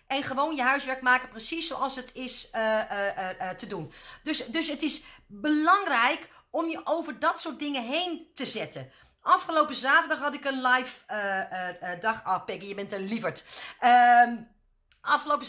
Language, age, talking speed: Dutch, 40-59, 175 wpm